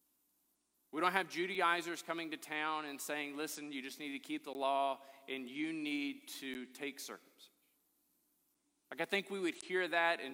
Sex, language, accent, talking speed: male, English, American, 175 wpm